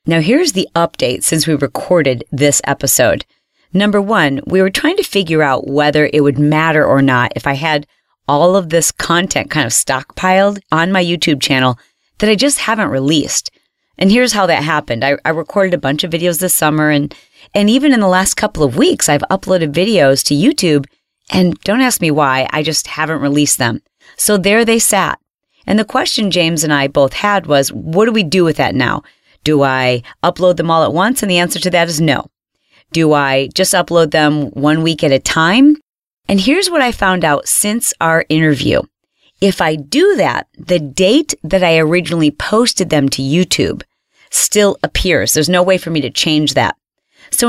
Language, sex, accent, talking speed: English, female, American, 200 wpm